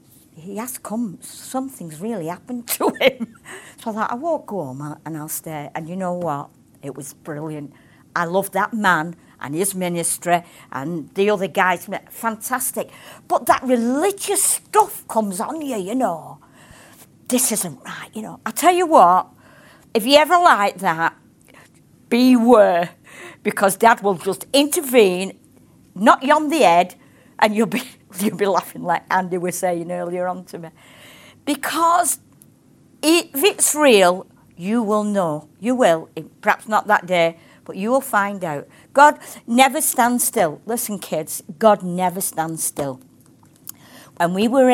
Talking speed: 155 wpm